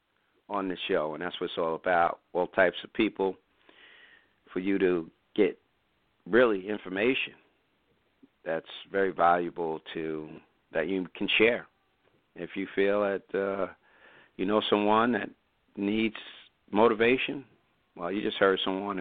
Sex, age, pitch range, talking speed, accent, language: male, 50-69, 95-120 Hz, 135 wpm, American, English